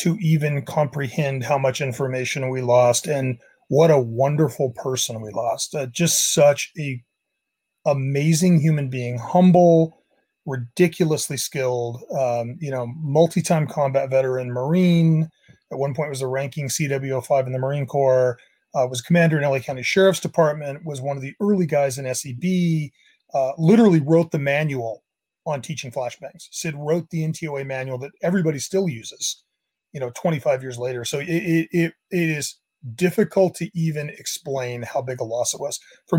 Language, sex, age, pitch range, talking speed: English, male, 30-49, 130-165 Hz, 165 wpm